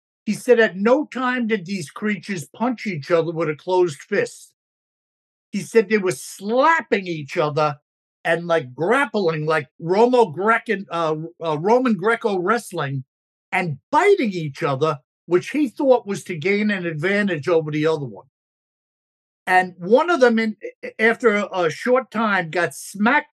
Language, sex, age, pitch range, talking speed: English, male, 60-79, 165-225 Hz, 140 wpm